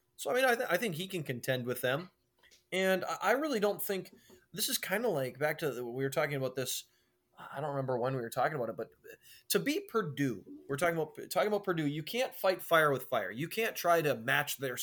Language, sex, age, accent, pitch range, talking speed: English, male, 20-39, American, 130-175 Hz, 250 wpm